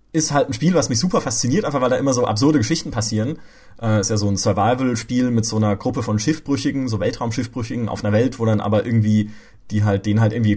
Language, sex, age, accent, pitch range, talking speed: German, male, 30-49, German, 115-155 Hz, 240 wpm